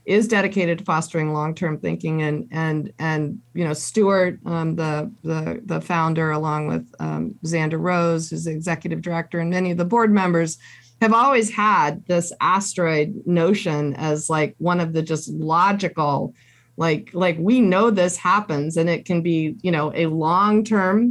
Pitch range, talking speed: 160-200 Hz, 170 wpm